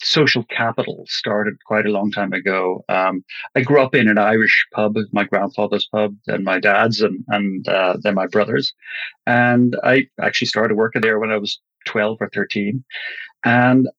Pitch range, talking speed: 110-140 Hz, 175 wpm